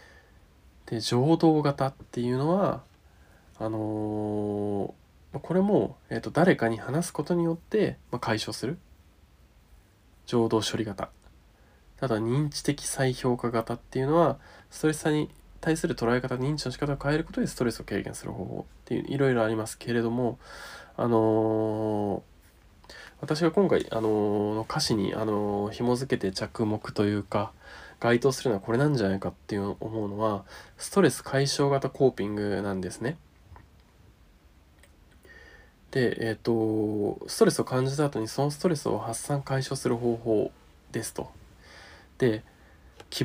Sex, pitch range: male, 105-140 Hz